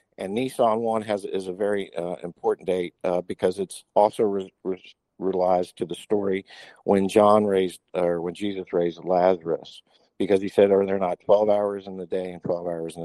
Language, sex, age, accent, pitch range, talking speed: English, male, 50-69, American, 90-105 Hz, 200 wpm